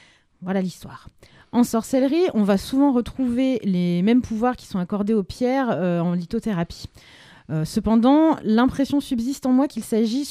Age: 30-49